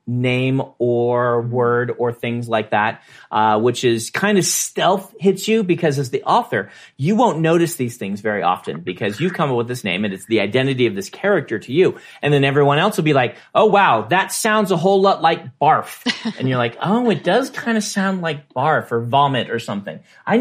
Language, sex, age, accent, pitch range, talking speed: English, male, 40-59, American, 125-190 Hz, 220 wpm